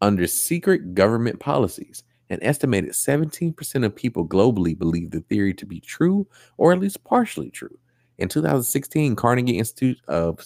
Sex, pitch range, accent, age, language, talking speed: male, 95-125 Hz, American, 30-49, English, 150 wpm